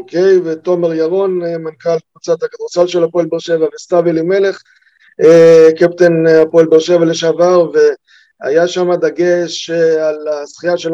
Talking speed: 130 wpm